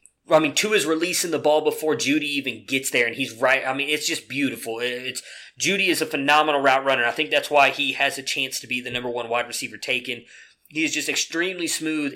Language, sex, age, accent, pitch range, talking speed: English, male, 20-39, American, 130-155 Hz, 235 wpm